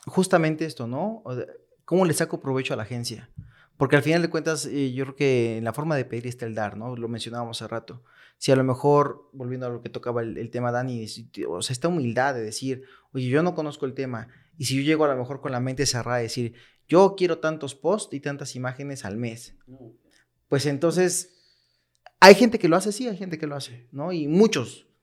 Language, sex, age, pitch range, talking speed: Spanish, male, 20-39, 125-165 Hz, 230 wpm